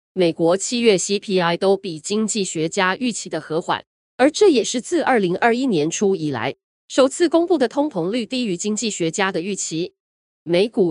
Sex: female